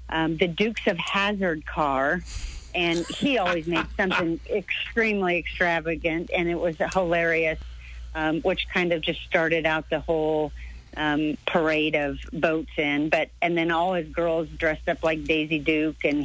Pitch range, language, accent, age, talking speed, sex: 155-205 Hz, English, American, 50-69, 160 wpm, female